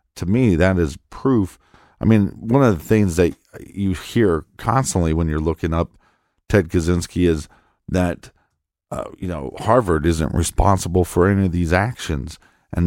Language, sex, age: English, male, 40-59